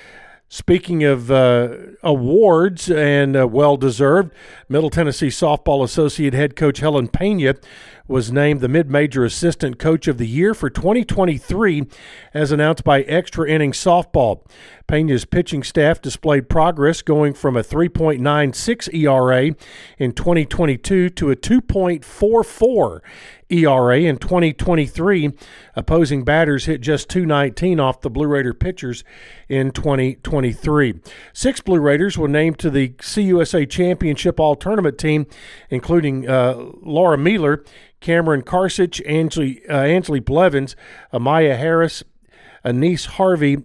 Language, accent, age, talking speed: English, American, 50-69, 120 wpm